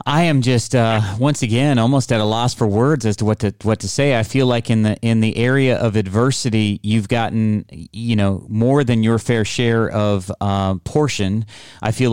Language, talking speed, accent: English, 215 wpm, American